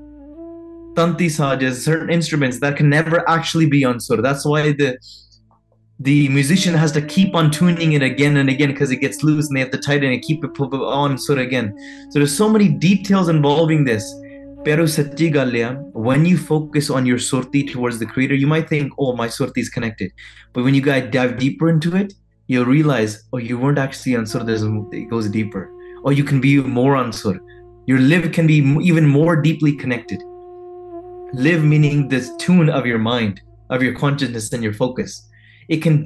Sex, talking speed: male, 190 wpm